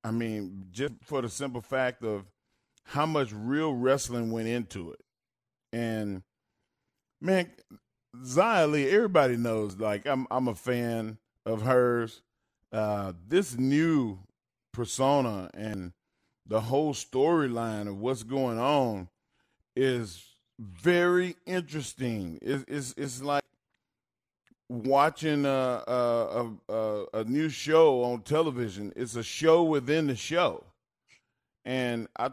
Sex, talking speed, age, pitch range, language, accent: male, 115 wpm, 40-59, 105-135 Hz, English, American